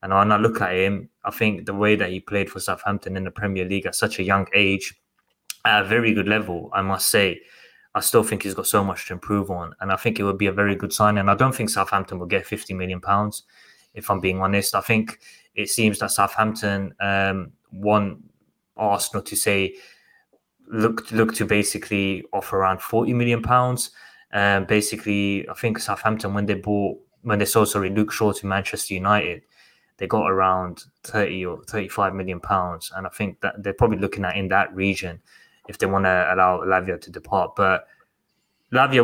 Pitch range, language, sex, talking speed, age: 95-110 Hz, English, male, 200 wpm, 20-39